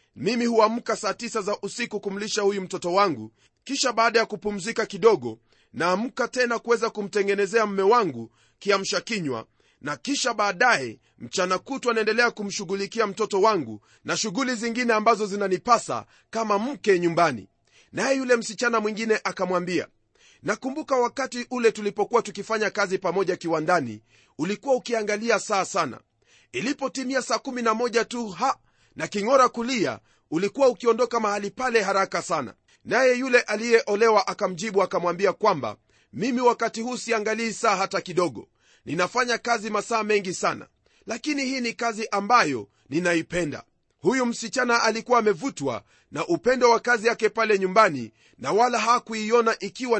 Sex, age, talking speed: male, 30-49, 135 wpm